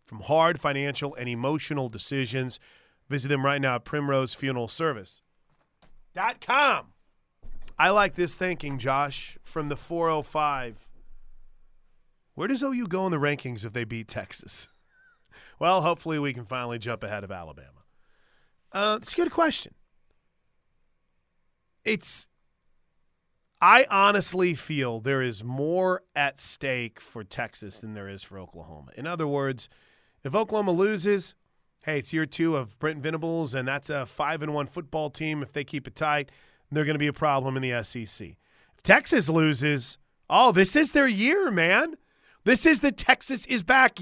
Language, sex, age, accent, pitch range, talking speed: English, male, 30-49, American, 135-185 Hz, 150 wpm